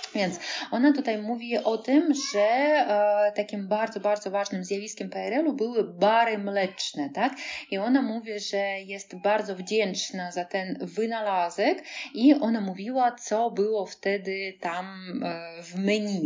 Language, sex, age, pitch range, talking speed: Polish, female, 20-39, 190-230 Hz, 135 wpm